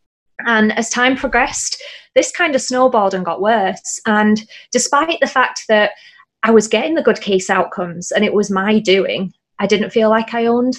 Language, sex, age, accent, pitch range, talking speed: English, female, 20-39, British, 185-230 Hz, 190 wpm